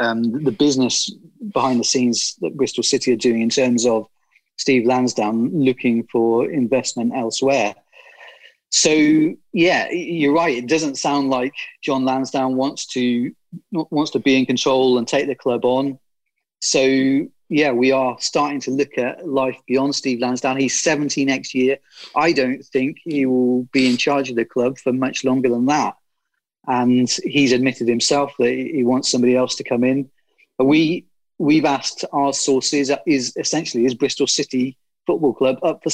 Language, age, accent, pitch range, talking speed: English, 30-49, British, 125-140 Hz, 165 wpm